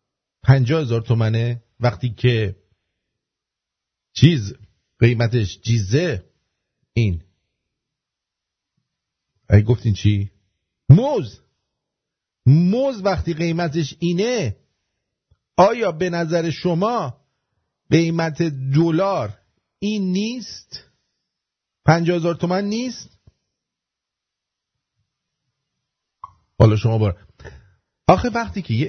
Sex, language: male, English